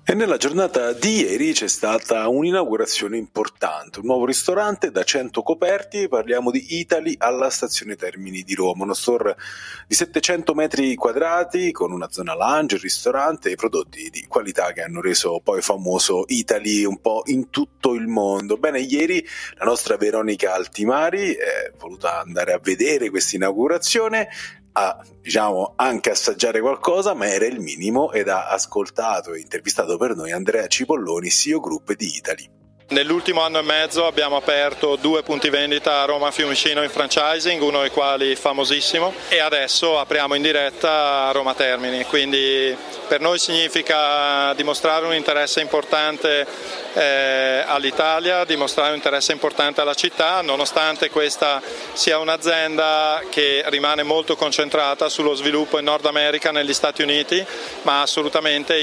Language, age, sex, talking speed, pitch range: Italian, 30-49, male, 150 wpm, 140-175 Hz